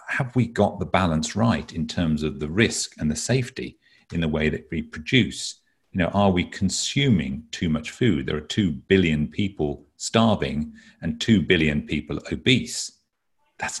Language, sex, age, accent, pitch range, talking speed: English, male, 40-59, British, 80-110 Hz, 175 wpm